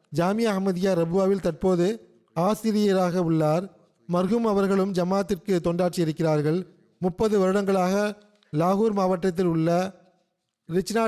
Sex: male